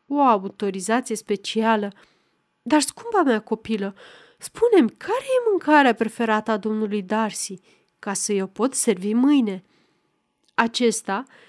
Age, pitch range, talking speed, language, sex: 30-49, 215-285 Hz, 115 wpm, Romanian, female